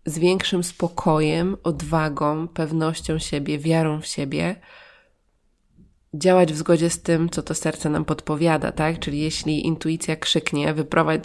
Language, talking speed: Polish, 135 wpm